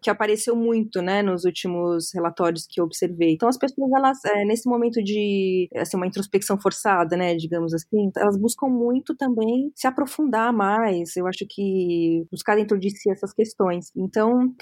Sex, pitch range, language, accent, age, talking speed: female, 185-230 Hz, Portuguese, Brazilian, 20-39, 180 wpm